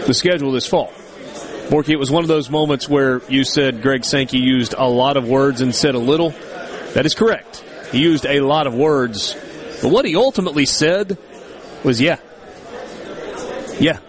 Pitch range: 140-180 Hz